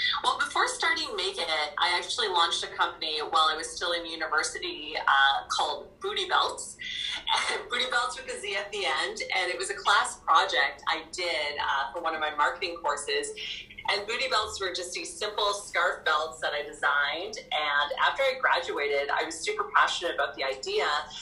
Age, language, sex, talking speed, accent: 30-49, English, female, 185 wpm, American